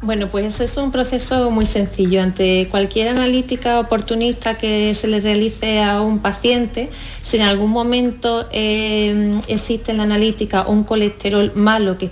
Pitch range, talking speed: 190-230 Hz, 160 wpm